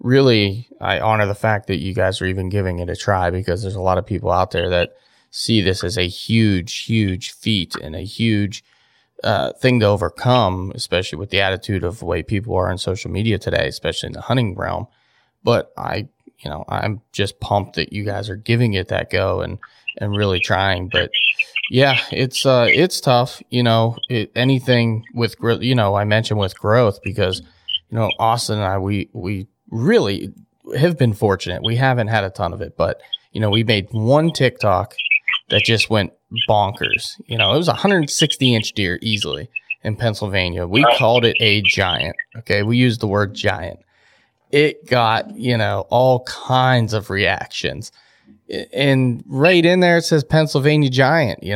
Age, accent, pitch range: 20-39, American, 95-125 Hz